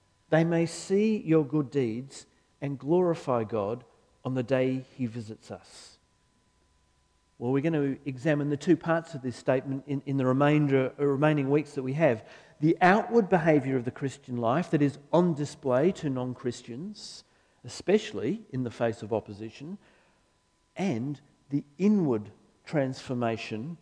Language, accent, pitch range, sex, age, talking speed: English, Australian, 125-155 Hz, male, 50-69, 145 wpm